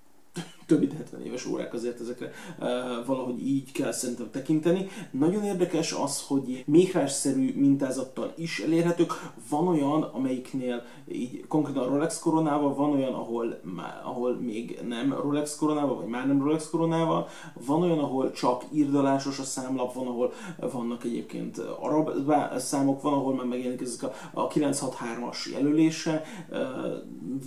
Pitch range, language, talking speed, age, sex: 125-155 Hz, Hungarian, 140 wpm, 30-49, male